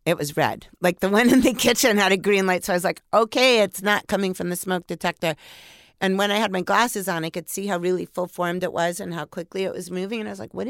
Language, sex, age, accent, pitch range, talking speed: English, female, 50-69, American, 160-200 Hz, 290 wpm